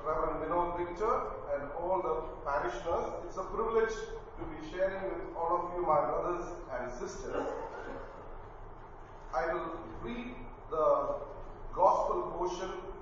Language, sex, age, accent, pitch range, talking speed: English, male, 40-59, Indian, 130-190 Hz, 125 wpm